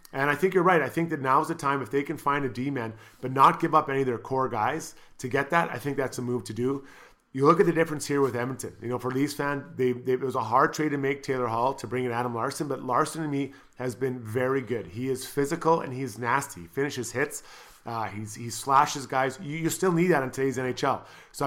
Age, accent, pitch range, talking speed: 30-49, American, 125-145 Hz, 270 wpm